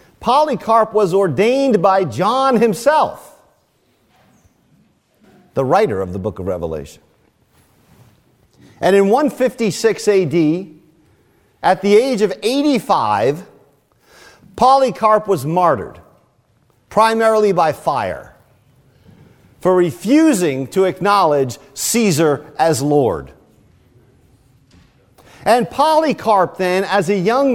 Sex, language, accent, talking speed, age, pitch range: male, English, American, 90 wpm, 50-69, 180-250 Hz